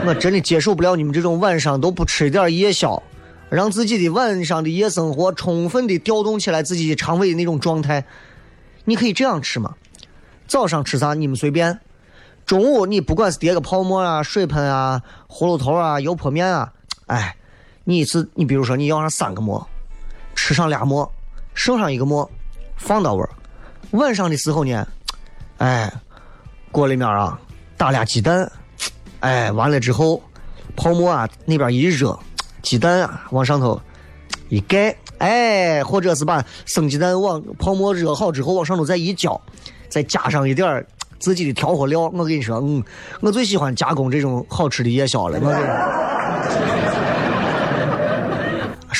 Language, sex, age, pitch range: Chinese, male, 20-39, 135-180 Hz